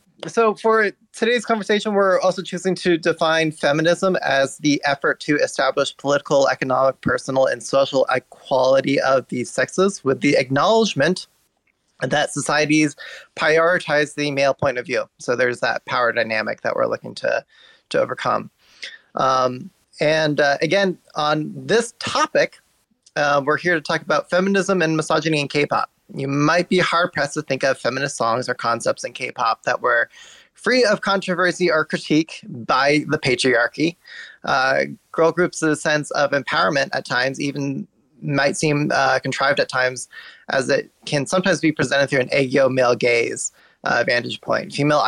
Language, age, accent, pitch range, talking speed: English, 20-39, American, 135-180 Hz, 155 wpm